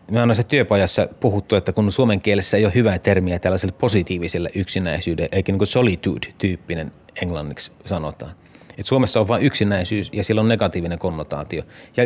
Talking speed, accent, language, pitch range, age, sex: 160 wpm, native, Finnish, 100-125 Hz, 30-49, male